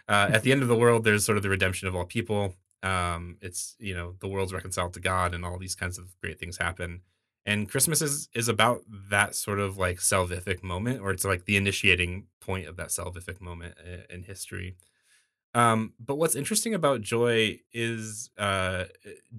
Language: English